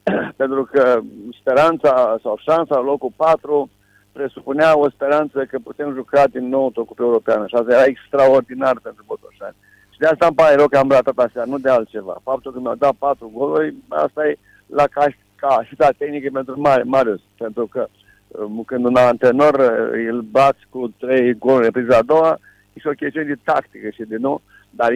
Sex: male